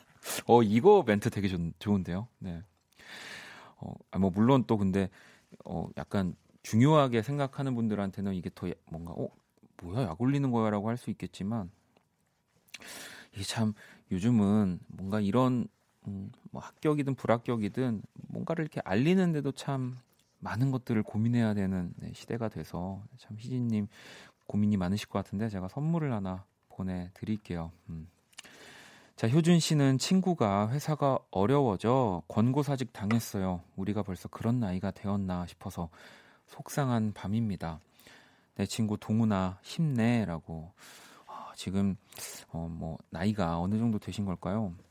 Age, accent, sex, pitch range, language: 30-49, native, male, 95-125 Hz, Korean